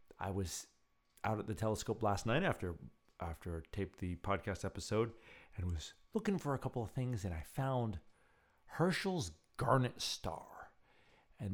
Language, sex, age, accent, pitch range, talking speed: English, male, 50-69, American, 90-115 Hz, 150 wpm